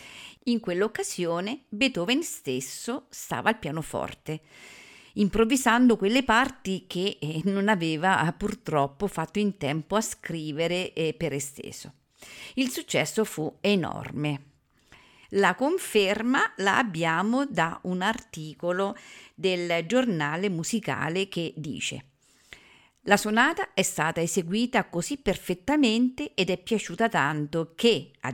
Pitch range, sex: 155-220 Hz, female